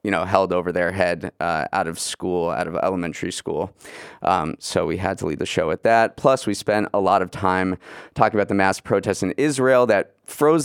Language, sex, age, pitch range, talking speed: English, male, 30-49, 90-105 Hz, 225 wpm